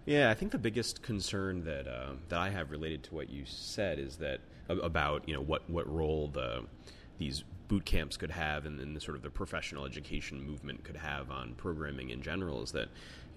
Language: English